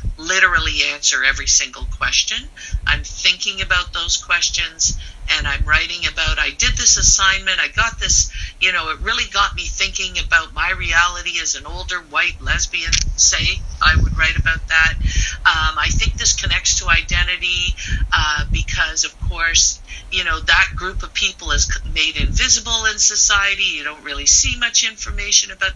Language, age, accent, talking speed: English, 50-69, American, 165 wpm